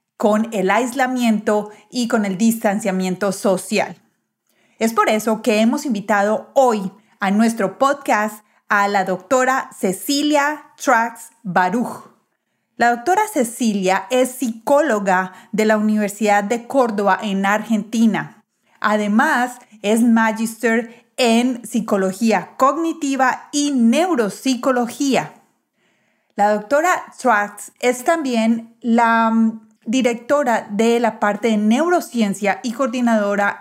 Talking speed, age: 100 wpm, 30-49